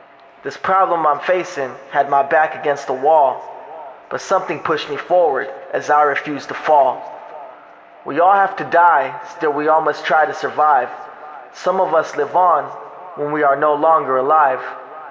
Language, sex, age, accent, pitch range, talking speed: English, male, 20-39, American, 150-180 Hz, 170 wpm